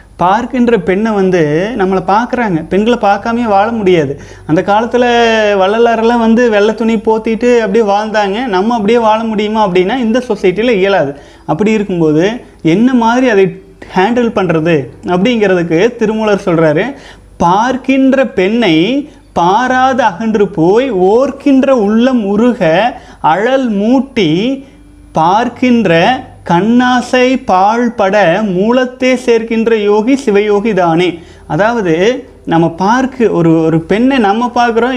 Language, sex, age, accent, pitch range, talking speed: Tamil, male, 30-49, native, 185-245 Hz, 105 wpm